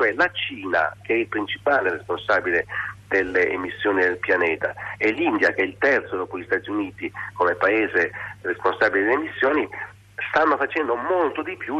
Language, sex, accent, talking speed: Italian, male, native, 165 wpm